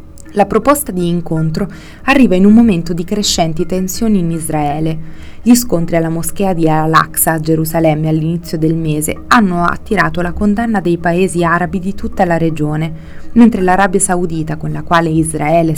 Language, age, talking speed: Italian, 20-39, 160 wpm